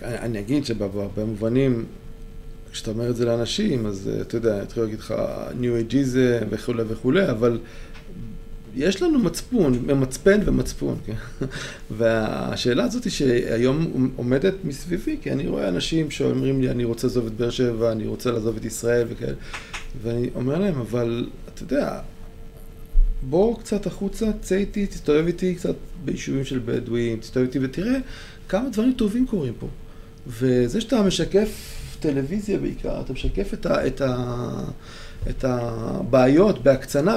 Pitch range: 120-190 Hz